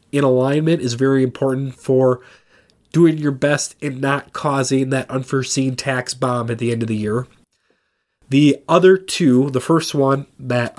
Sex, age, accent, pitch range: male, 30-49, American, 130-155 Hz